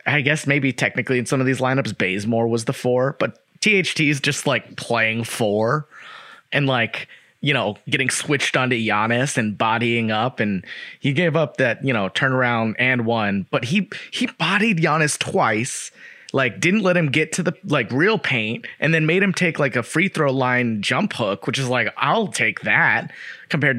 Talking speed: 190 wpm